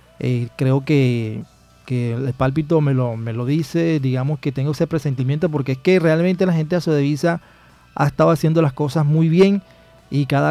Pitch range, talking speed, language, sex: 130-155 Hz, 190 wpm, Spanish, male